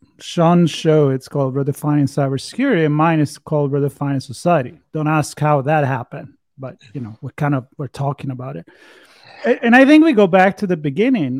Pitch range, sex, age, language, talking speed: 140-180 Hz, male, 30-49, English, 180 wpm